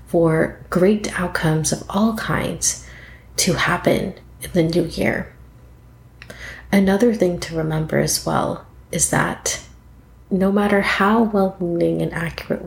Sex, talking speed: female, 130 wpm